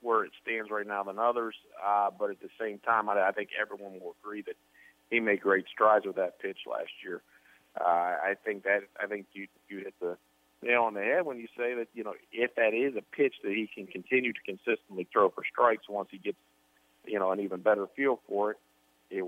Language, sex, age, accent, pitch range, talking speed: English, male, 40-59, American, 95-120 Hz, 235 wpm